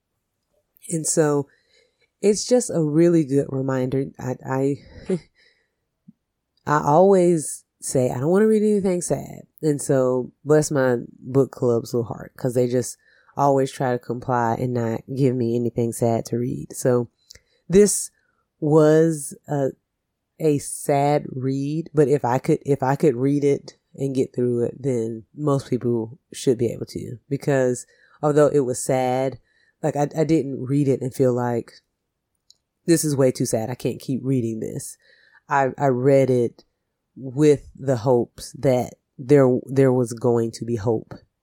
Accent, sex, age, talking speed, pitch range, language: American, female, 30-49, 160 wpm, 125-150 Hz, English